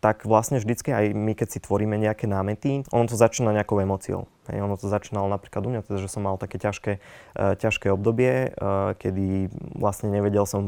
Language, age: Slovak, 20-39